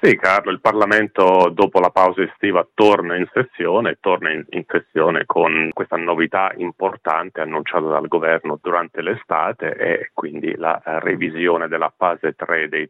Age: 40-59